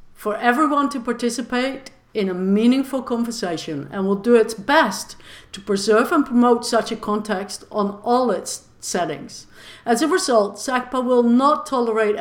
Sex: female